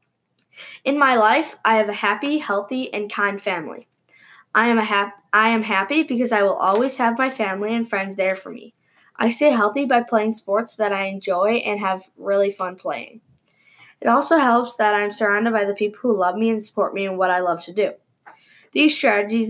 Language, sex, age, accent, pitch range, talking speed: English, female, 10-29, American, 200-240 Hz, 200 wpm